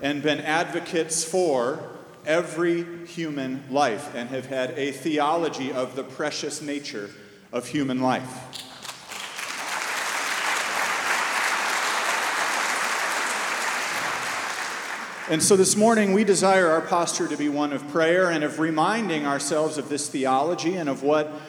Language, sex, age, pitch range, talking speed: English, male, 40-59, 140-175 Hz, 115 wpm